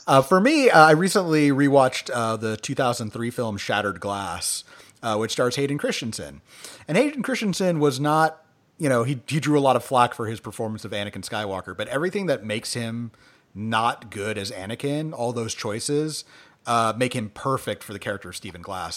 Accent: American